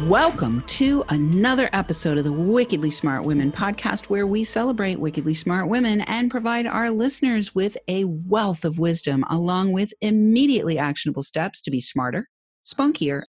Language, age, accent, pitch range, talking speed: English, 40-59, American, 150-225 Hz, 155 wpm